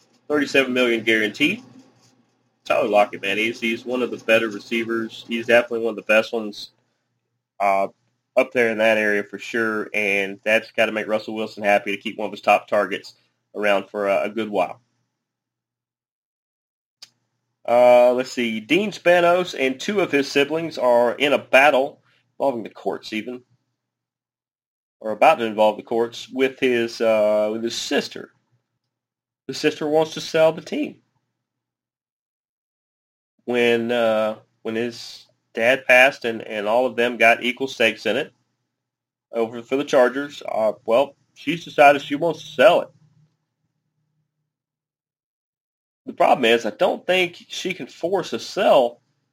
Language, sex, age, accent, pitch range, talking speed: English, male, 30-49, American, 110-140 Hz, 155 wpm